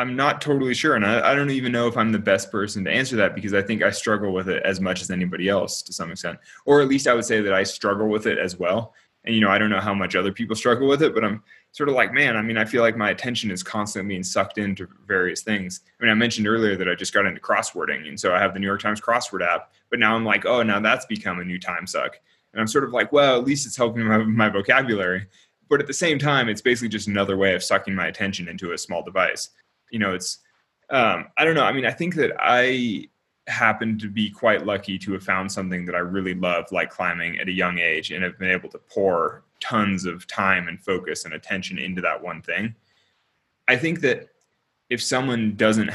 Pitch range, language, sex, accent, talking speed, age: 95-120 Hz, English, male, American, 260 wpm, 20-39